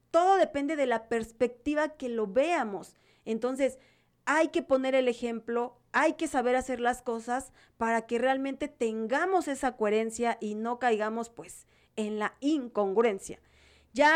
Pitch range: 225-275 Hz